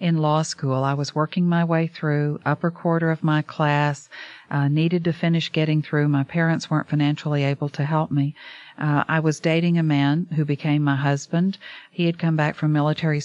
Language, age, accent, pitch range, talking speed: English, 50-69, American, 145-165 Hz, 200 wpm